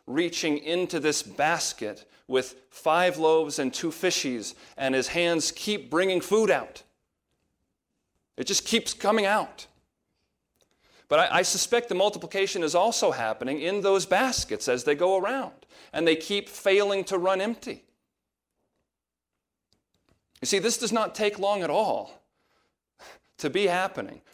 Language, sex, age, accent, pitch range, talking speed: English, male, 40-59, American, 150-205 Hz, 140 wpm